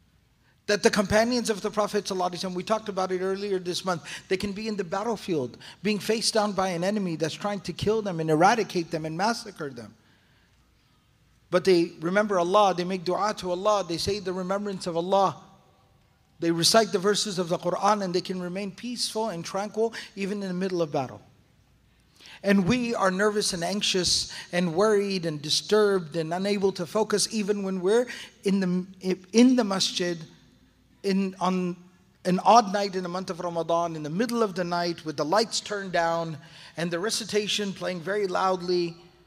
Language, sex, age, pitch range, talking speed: English, male, 40-59, 170-205 Hz, 185 wpm